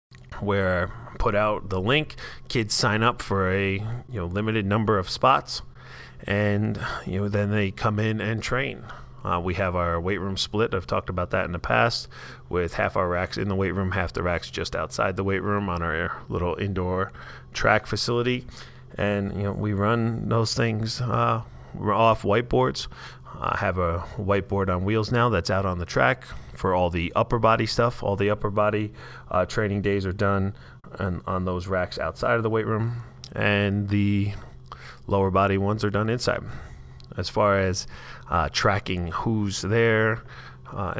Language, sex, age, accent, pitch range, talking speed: English, male, 30-49, American, 95-115 Hz, 180 wpm